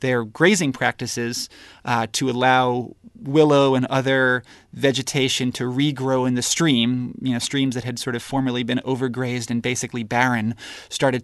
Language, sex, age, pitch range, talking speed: English, male, 30-49, 120-135 Hz, 155 wpm